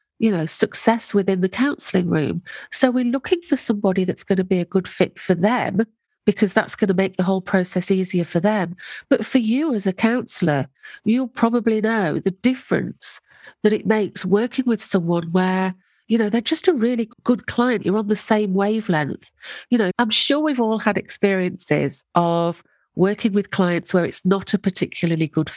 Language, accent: English, British